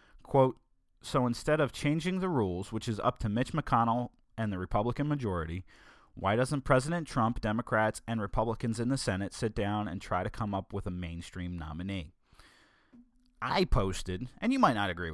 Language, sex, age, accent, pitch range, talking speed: English, male, 30-49, American, 95-135 Hz, 180 wpm